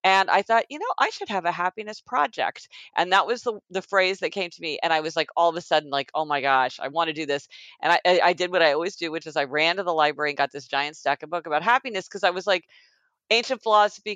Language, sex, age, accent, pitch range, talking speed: English, female, 50-69, American, 155-205 Hz, 295 wpm